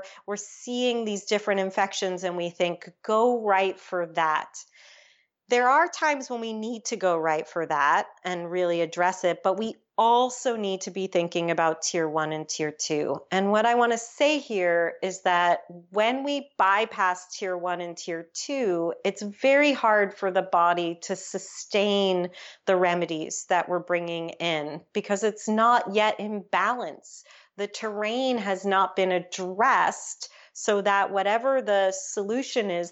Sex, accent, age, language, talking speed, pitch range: female, American, 40-59, English, 160 wpm, 180-225 Hz